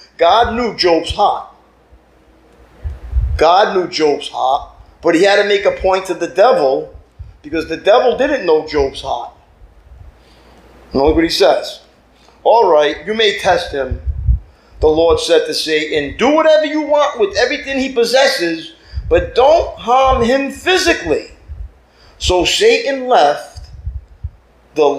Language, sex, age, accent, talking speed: English, male, 40-59, American, 135 wpm